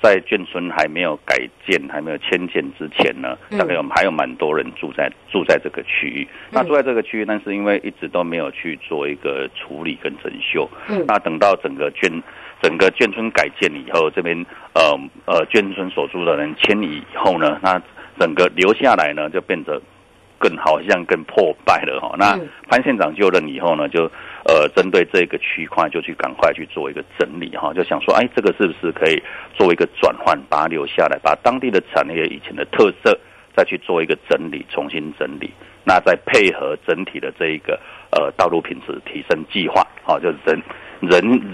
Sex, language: male, Chinese